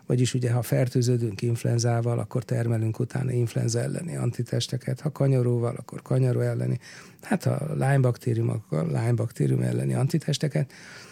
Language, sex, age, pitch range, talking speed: Hungarian, male, 60-79, 120-155 Hz, 130 wpm